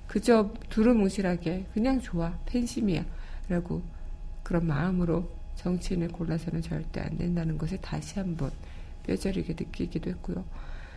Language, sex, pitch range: Korean, female, 160-195 Hz